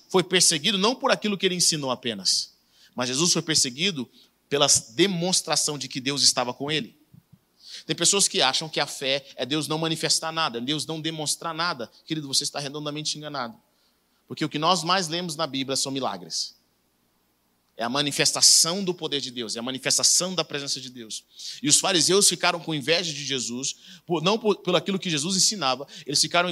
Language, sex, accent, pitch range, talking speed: Portuguese, male, Brazilian, 145-190 Hz, 190 wpm